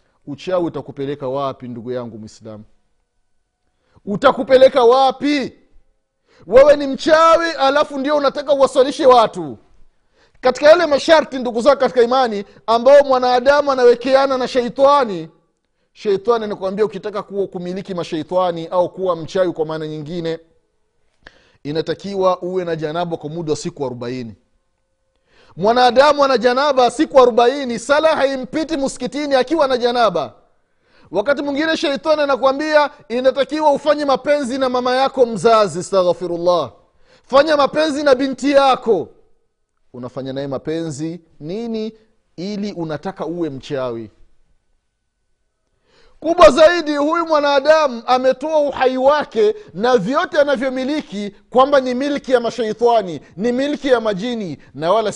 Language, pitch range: Swahili, 180-280 Hz